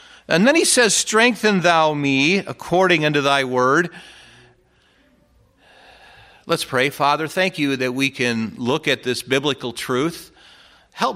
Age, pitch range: 50-69, 110-135 Hz